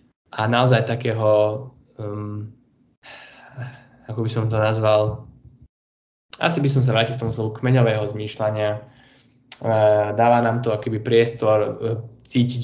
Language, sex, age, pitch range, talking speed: Slovak, male, 10-29, 110-120 Hz, 130 wpm